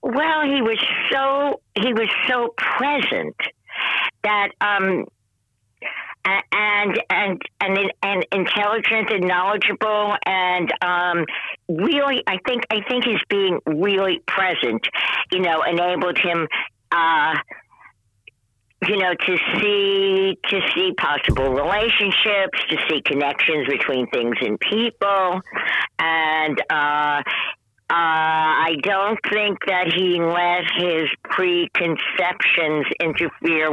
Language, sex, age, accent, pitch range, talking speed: English, female, 60-79, American, 160-210 Hz, 105 wpm